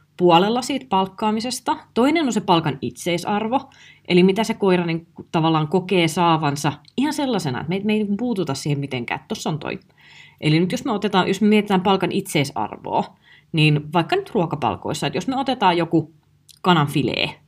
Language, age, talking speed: Finnish, 30-49, 170 wpm